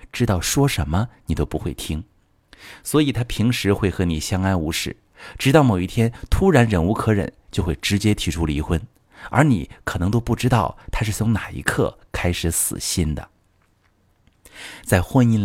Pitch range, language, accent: 90-125 Hz, Chinese, native